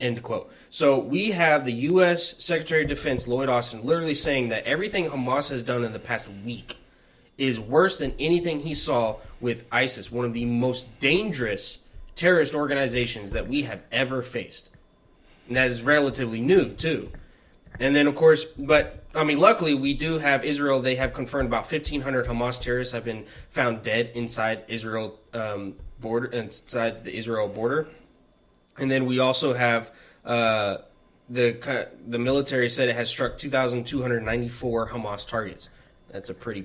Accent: American